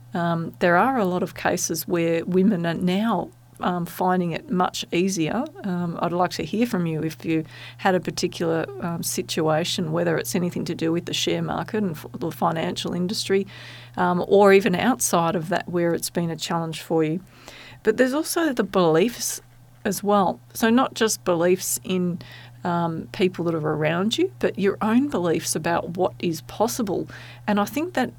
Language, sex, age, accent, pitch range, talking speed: English, female, 40-59, Australian, 165-205 Hz, 185 wpm